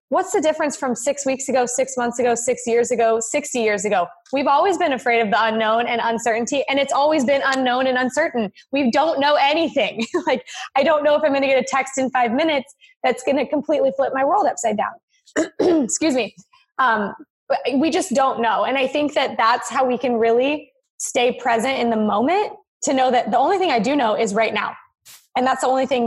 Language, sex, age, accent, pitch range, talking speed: English, female, 20-39, American, 225-280 Hz, 225 wpm